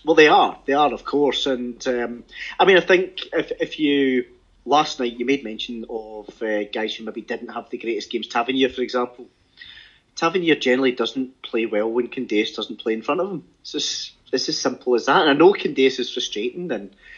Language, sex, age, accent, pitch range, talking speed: English, male, 30-49, British, 115-140 Hz, 215 wpm